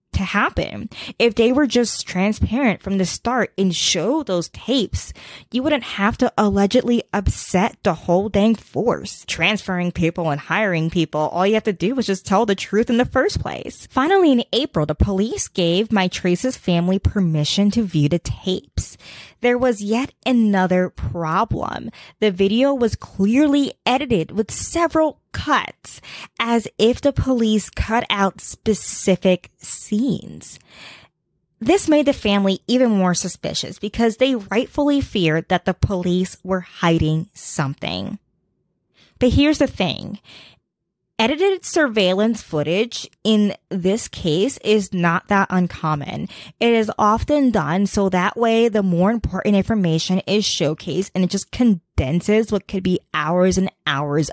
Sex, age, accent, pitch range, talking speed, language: female, 20-39, American, 180-235 Hz, 145 wpm, English